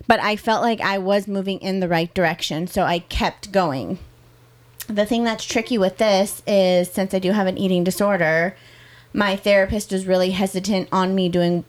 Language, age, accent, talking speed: English, 30-49, American, 190 wpm